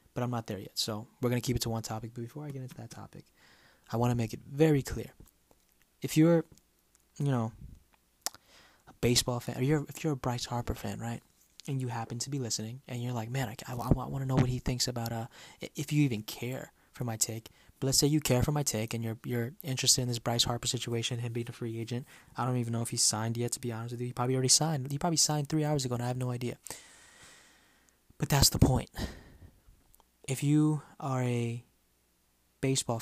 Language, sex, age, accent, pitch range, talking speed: English, male, 20-39, American, 110-135 Hz, 235 wpm